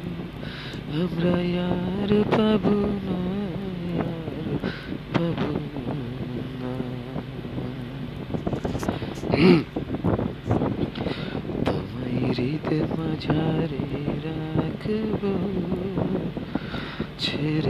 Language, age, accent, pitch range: Bengali, 30-49, native, 150-205 Hz